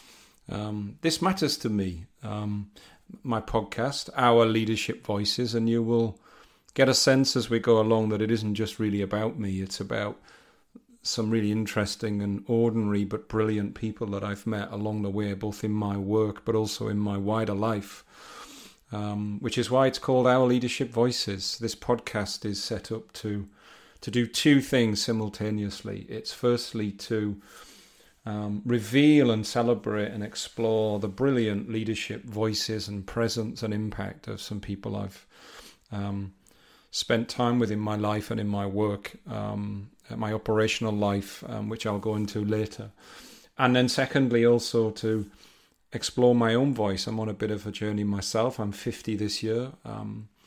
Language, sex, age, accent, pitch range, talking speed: English, male, 40-59, British, 105-115 Hz, 165 wpm